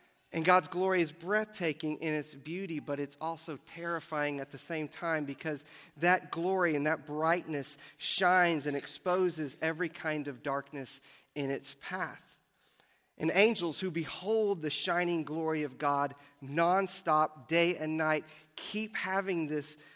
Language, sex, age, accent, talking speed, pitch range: English, male, 40-59, American, 145 wpm, 155-185 Hz